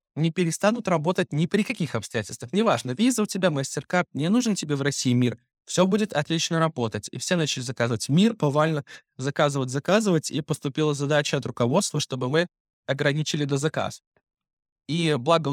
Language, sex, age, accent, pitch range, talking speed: Russian, male, 20-39, native, 130-160 Hz, 160 wpm